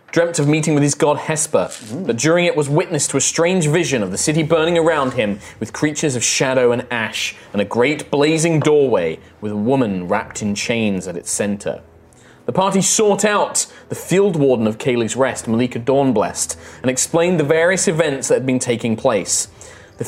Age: 20-39